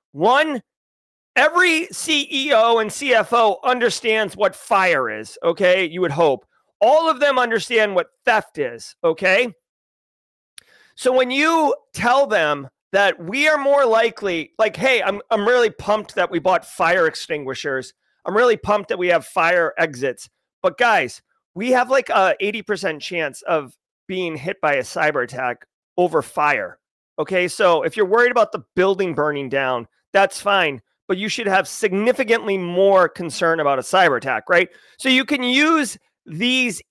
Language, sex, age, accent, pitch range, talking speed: English, male, 30-49, American, 175-245 Hz, 155 wpm